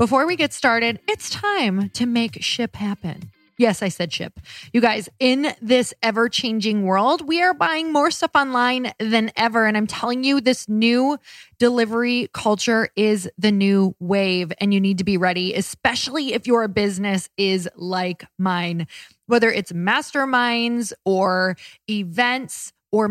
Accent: American